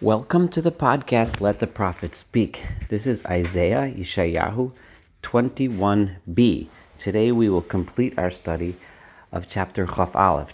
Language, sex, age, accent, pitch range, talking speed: English, male, 40-59, American, 90-115 Hz, 130 wpm